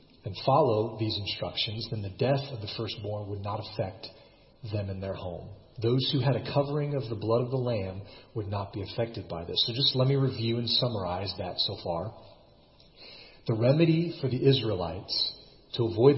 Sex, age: male, 40-59